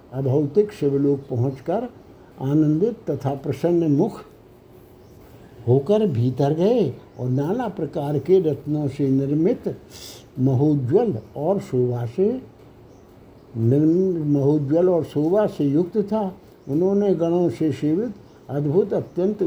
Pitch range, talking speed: 135-180 Hz, 105 wpm